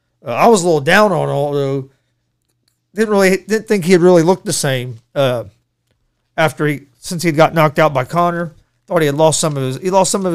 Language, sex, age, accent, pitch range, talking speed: English, male, 40-59, American, 120-170 Hz, 220 wpm